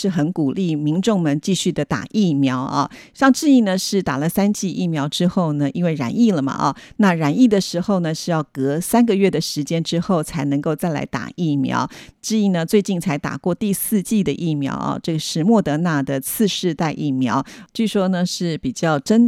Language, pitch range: Chinese, 150-195 Hz